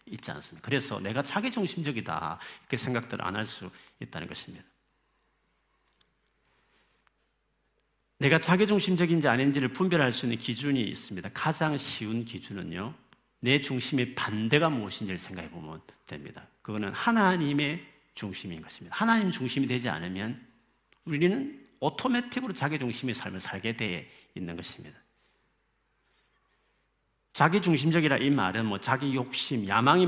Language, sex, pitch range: Korean, male, 110-155 Hz